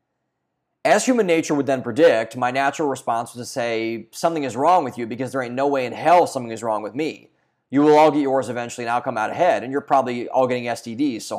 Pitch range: 120-150 Hz